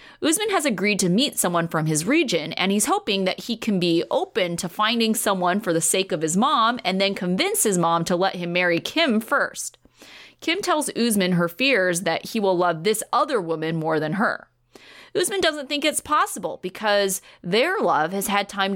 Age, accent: 30-49, American